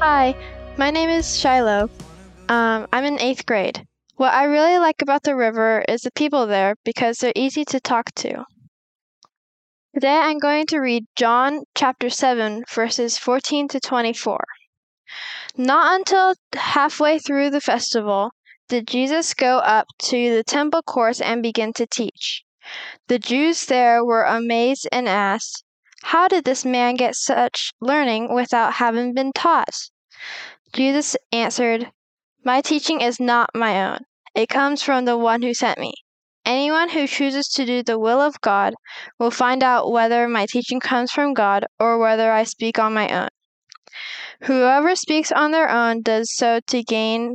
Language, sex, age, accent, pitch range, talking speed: English, female, 10-29, American, 230-285 Hz, 160 wpm